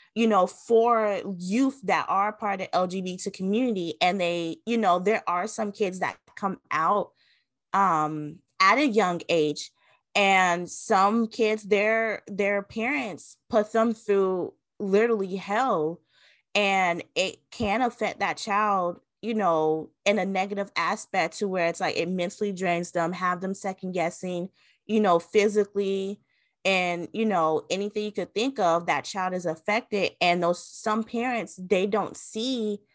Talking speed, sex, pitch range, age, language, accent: 155 wpm, female, 175-215 Hz, 20-39, English, American